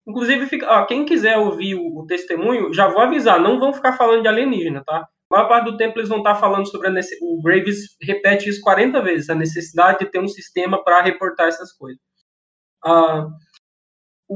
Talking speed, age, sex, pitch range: 190 wpm, 20-39, male, 175-225 Hz